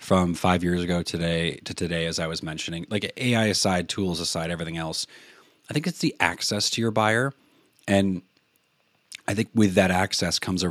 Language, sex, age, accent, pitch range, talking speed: English, male, 30-49, American, 90-115 Hz, 190 wpm